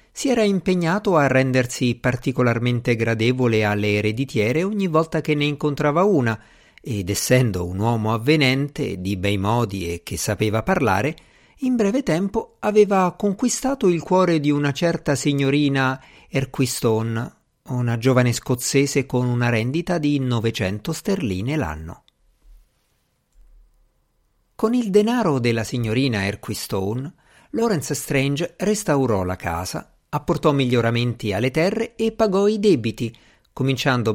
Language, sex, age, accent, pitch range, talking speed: Italian, male, 50-69, native, 110-165 Hz, 120 wpm